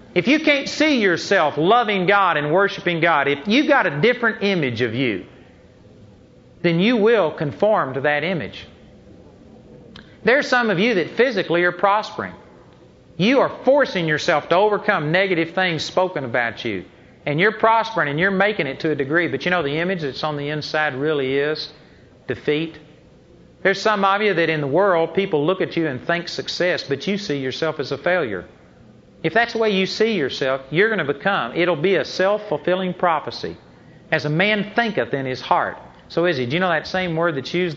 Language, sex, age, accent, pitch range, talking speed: English, male, 40-59, American, 145-190 Hz, 195 wpm